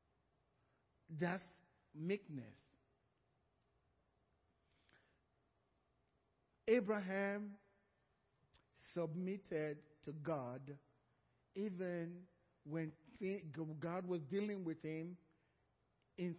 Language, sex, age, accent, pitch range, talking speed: English, male, 50-69, Nigerian, 165-250 Hz, 50 wpm